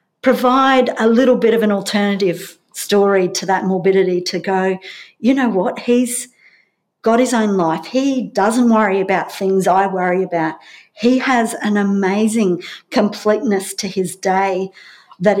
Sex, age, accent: female, 50-69, Australian